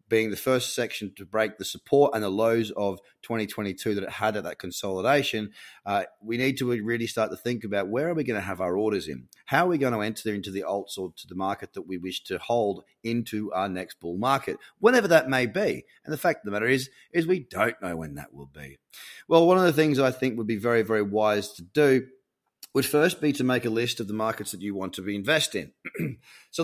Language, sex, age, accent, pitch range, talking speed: English, male, 30-49, Australian, 105-140 Hz, 250 wpm